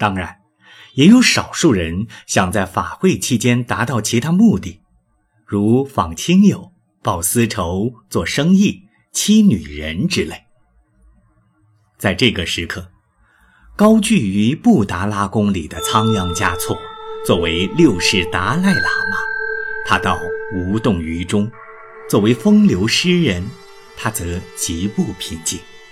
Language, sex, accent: Chinese, male, native